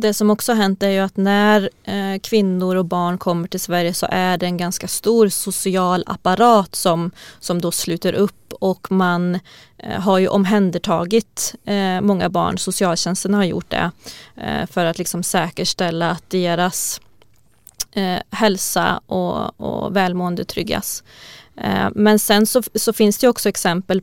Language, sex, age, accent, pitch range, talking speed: Swedish, female, 20-39, native, 175-200 Hz, 145 wpm